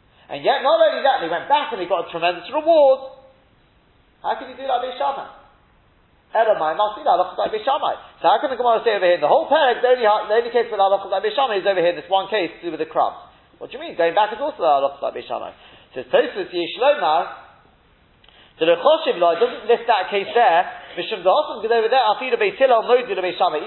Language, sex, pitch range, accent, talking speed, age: English, male, 175-270 Hz, British, 175 wpm, 30-49